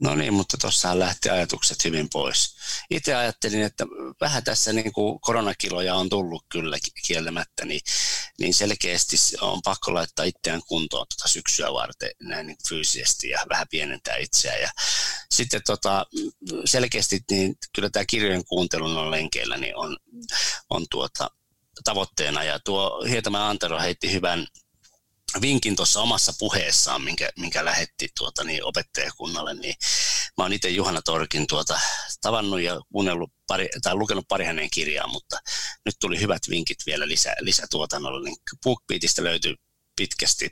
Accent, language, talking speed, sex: native, Finnish, 140 wpm, male